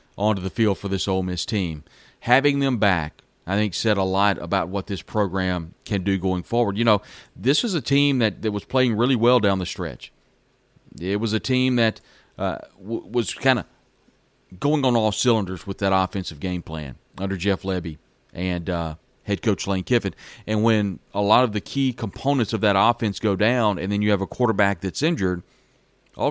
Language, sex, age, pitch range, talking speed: English, male, 40-59, 95-115 Hz, 205 wpm